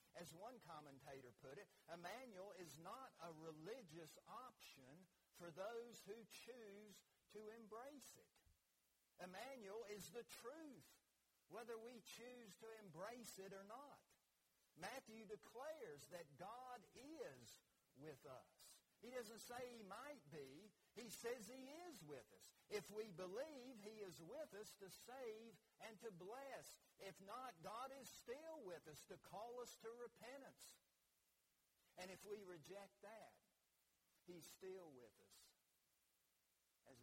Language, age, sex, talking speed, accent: English, 50-69, male, 135 wpm, American